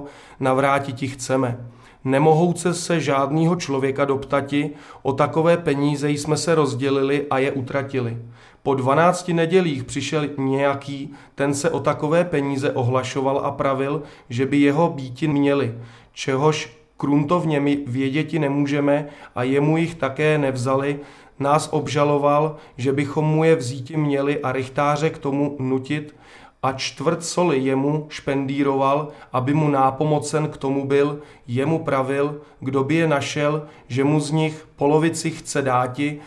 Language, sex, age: Czech, male, 40-59